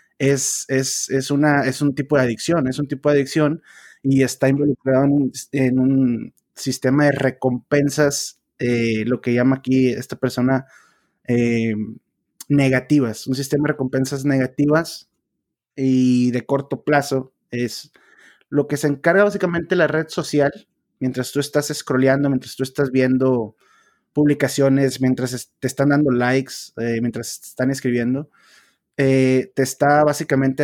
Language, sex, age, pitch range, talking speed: Spanish, male, 30-49, 130-145 Hz, 140 wpm